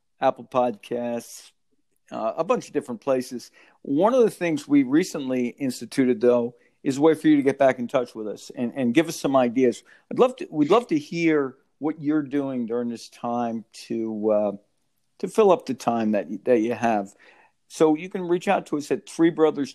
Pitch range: 120-155 Hz